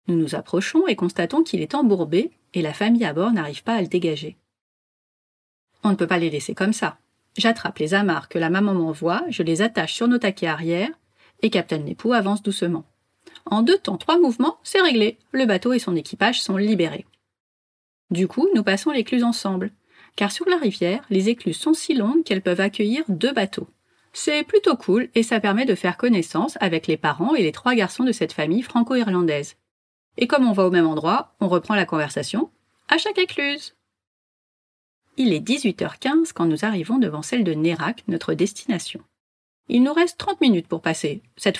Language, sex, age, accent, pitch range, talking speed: French, female, 30-49, French, 170-240 Hz, 190 wpm